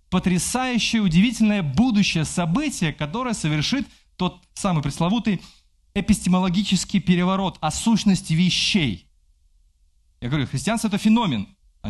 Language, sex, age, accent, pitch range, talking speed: Russian, male, 20-39, native, 110-185 Hz, 100 wpm